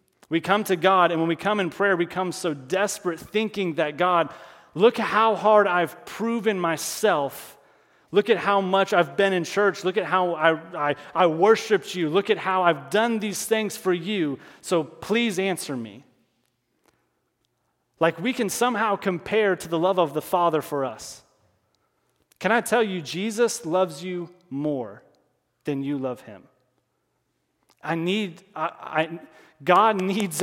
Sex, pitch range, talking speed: male, 155-200 Hz, 165 wpm